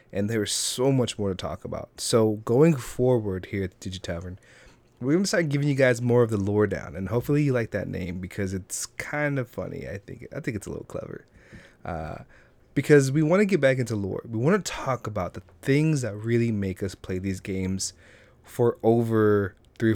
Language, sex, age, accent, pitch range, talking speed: English, male, 20-39, American, 100-125 Hz, 215 wpm